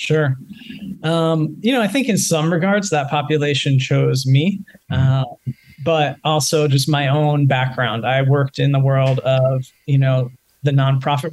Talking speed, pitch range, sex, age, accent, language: 160 wpm, 135-155 Hz, male, 20-39, American, English